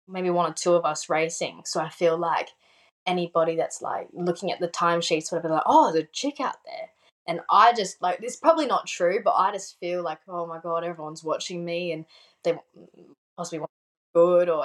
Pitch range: 165-210 Hz